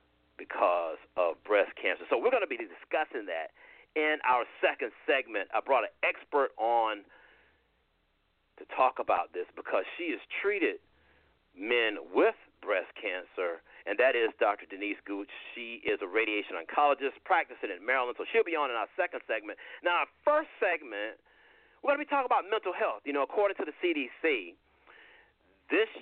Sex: male